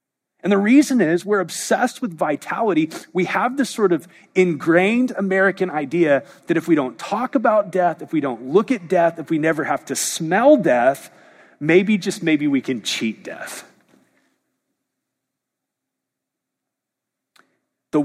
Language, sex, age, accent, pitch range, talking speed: English, male, 30-49, American, 145-195 Hz, 145 wpm